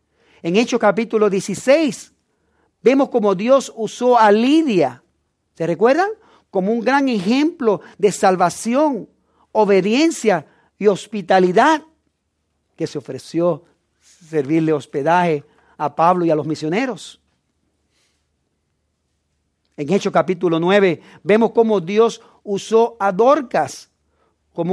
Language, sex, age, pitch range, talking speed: English, male, 50-69, 155-215 Hz, 105 wpm